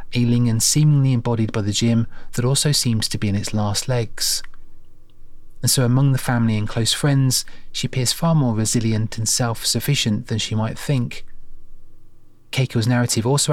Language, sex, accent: English, male, British